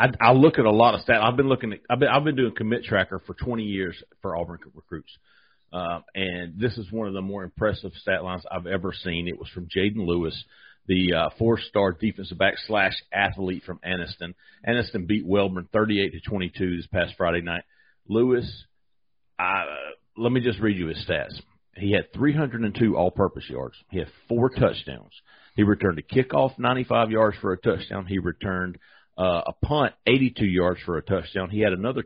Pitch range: 95-130 Hz